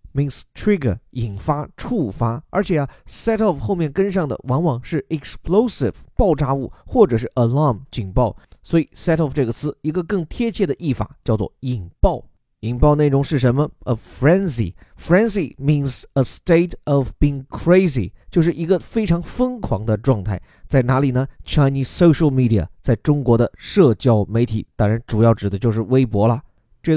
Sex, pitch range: male, 115-155 Hz